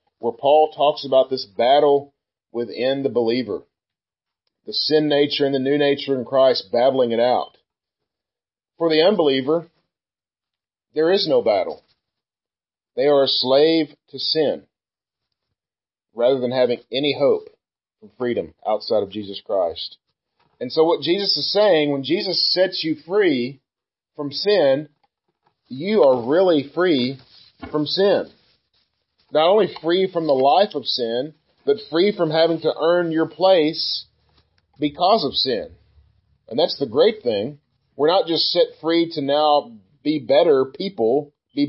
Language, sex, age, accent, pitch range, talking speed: English, male, 40-59, American, 135-175 Hz, 140 wpm